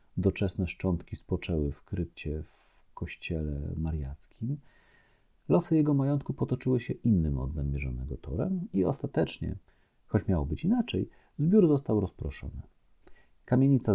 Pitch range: 75-105 Hz